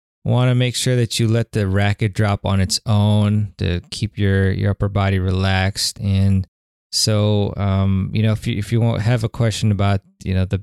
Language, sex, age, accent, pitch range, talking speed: English, male, 20-39, American, 95-110 Hz, 210 wpm